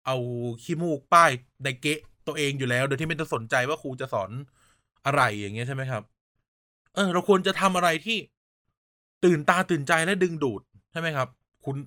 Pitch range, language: 135-185 Hz, Thai